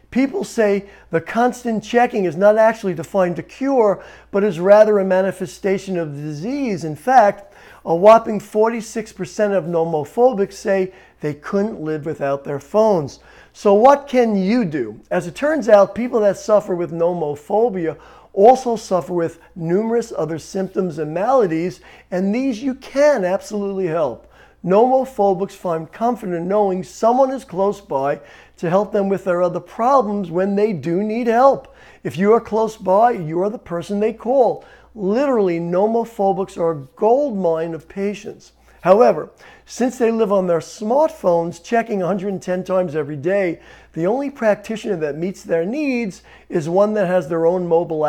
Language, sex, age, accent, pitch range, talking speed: English, male, 50-69, American, 170-220 Hz, 160 wpm